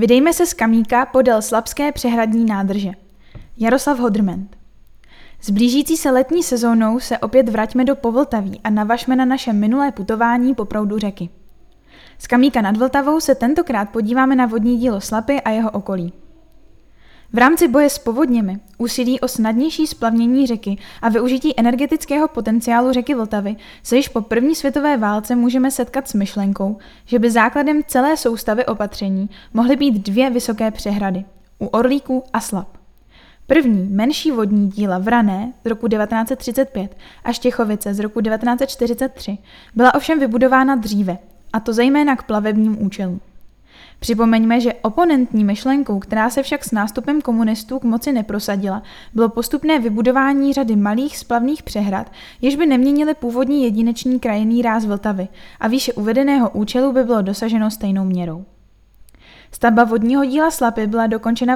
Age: 10-29